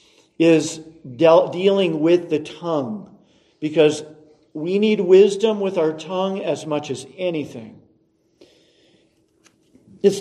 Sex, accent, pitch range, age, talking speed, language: male, American, 145-195 Hz, 50-69, 105 wpm, English